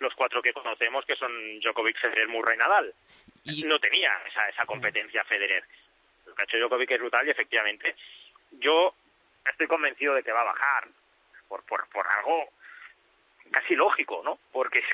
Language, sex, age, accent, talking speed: Spanish, male, 30-49, Spanish, 160 wpm